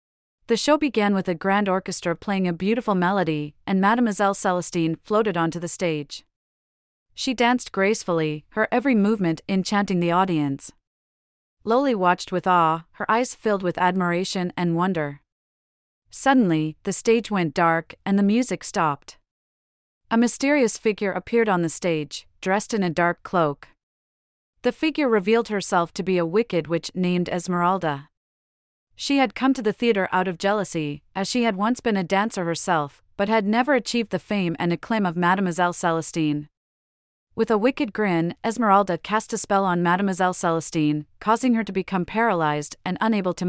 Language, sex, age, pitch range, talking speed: English, female, 40-59, 165-215 Hz, 160 wpm